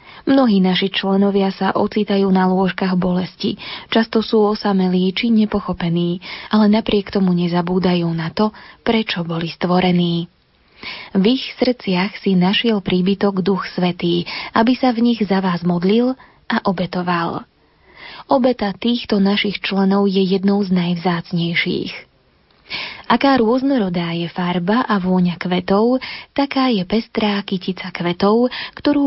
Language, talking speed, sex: Slovak, 125 wpm, female